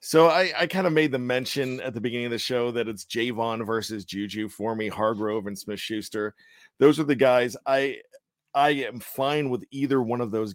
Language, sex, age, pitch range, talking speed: English, male, 40-59, 110-135 Hz, 210 wpm